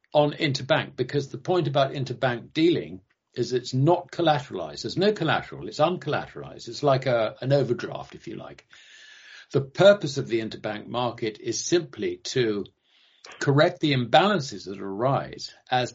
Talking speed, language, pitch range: 150 wpm, English, 120-155 Hz